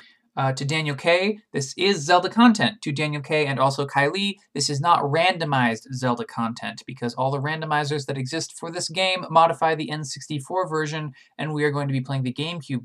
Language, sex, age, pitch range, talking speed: English, male, 20-39, 135-175 Hz, 195 wpm